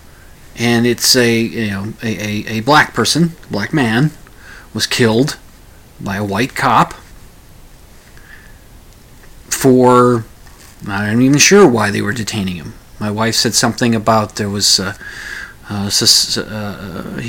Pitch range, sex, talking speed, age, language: 105-120 Hz, male, 120 wpm, 40-59, English